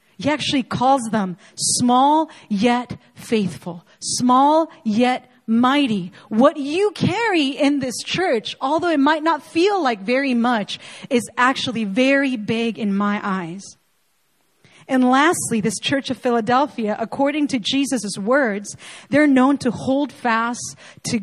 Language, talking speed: English, 135 wpm